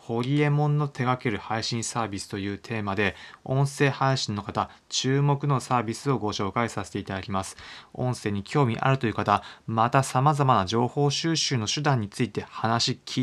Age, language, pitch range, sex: 20-39, Japanese, 105-135 Hz, male